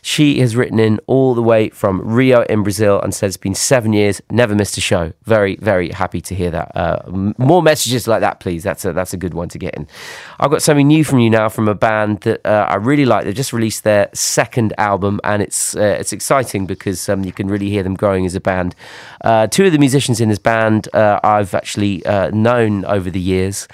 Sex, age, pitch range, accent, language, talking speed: male, 30-49, 95-115 Hz, British, French, 240 wpm